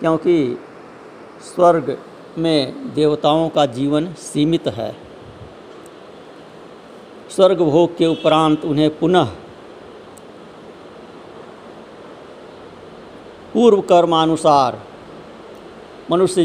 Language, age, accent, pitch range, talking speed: Hindi, 50-69, native, 135-170 Hz, 60 wpm